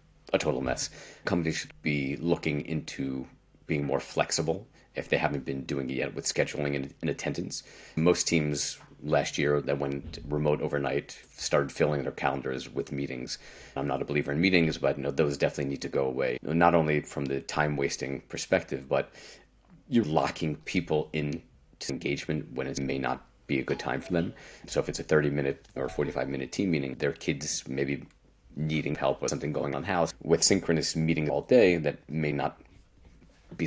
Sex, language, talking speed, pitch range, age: male, English, 180 wpm, 70-80 Hz, 30-49